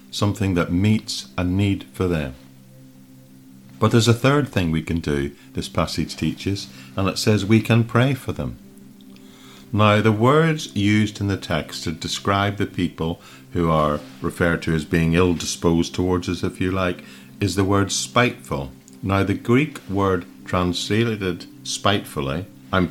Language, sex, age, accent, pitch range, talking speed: English, male, 50-69, British, 75-100 Hz, 155 wpm